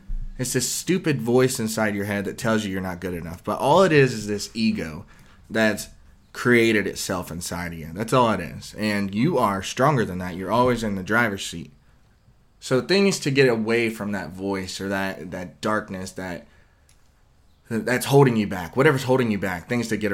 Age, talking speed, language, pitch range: 20-39, 200 wpm, English, 95-120 Hz